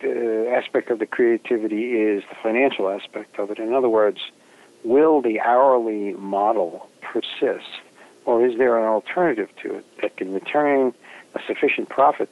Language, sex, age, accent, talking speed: English, male, 60-79, American, 155 wpm